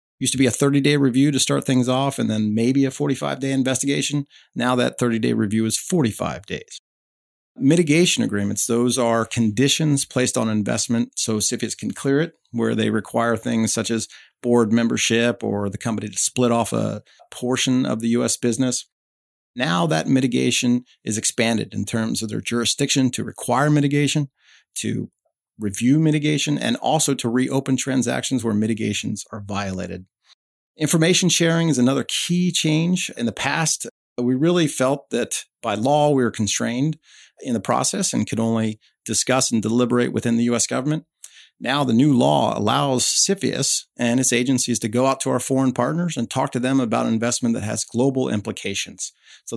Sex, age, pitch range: male, 40-59, 115-140 Hz